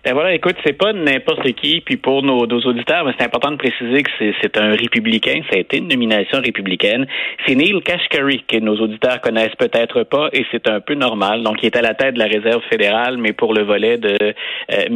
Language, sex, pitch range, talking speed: French, male, 110-145 Hz, 235 wpm